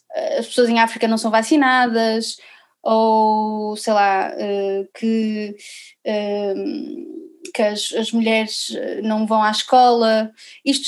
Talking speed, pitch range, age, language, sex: 110 wpm, 215-260 Hz, 20-39, Portuguese, female